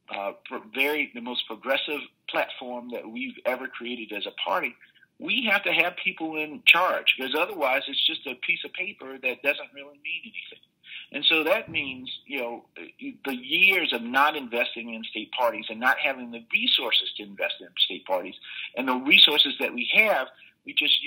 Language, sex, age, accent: English, male, 50-69, American